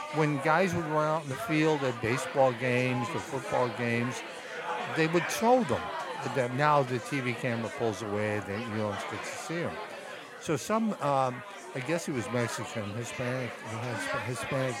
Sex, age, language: male, 60-79, English